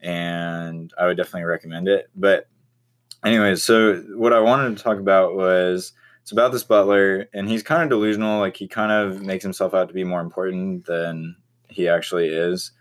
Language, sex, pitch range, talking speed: English, male, 90-120 Hz, 185 wpm